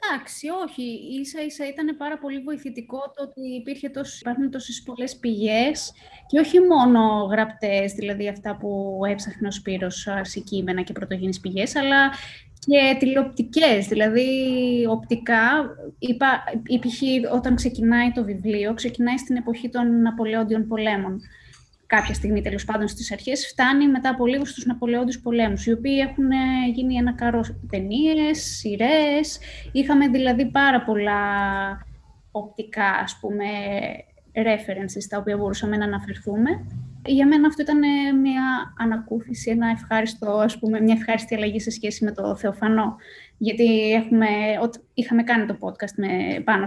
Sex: female